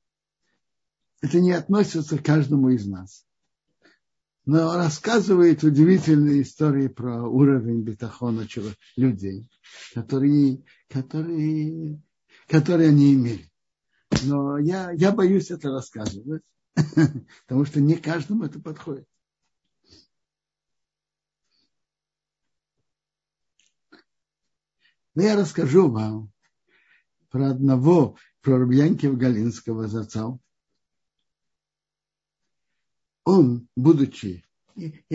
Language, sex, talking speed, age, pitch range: Russian, male, 75 wpm, 60-79, 115-155 Hz